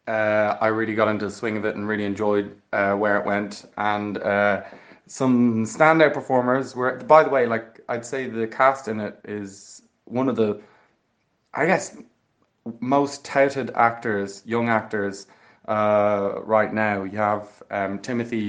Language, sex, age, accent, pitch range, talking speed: English, male, 20-39, Irish, 110-130 Hz, 160 wpm